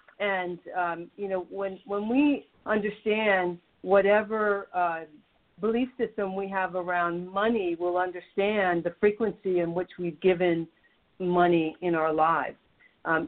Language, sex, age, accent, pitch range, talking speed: English, female, 50-69, American, 170-200 Hz, 130 wpm